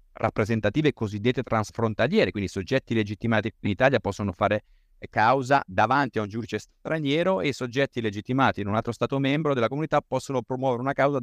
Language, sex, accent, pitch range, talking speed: Italian, male, native, 100-130 Hz, 160 wpm